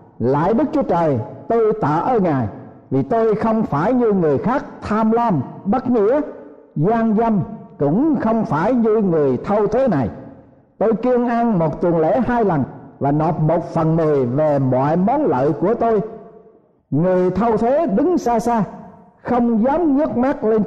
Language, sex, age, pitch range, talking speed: Vietnamese, male, 60-79, 160-235 Hz, 170 wpm